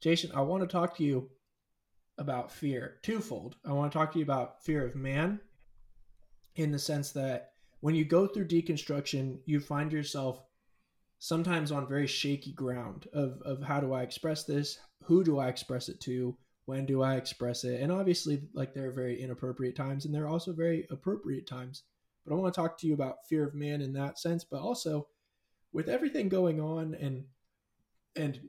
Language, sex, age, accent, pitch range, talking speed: English, male, 20-39, American, 130-155 Hz, 190 wpm